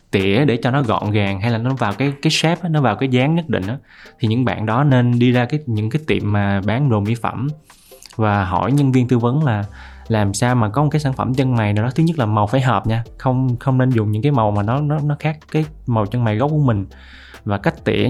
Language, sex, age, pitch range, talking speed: Vietnamese, male, 20-39, 105-130 Hz, 275 wpm